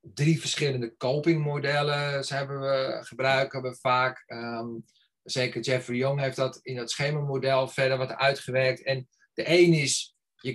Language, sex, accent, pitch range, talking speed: Dutch, male, Dutch, 120-140 Hz, 125 wpm